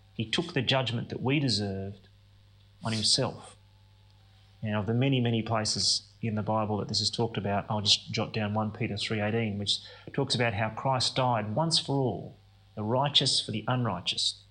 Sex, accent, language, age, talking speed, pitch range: male, Australian, English, 30-49, 180 wpm, 100-125 Hz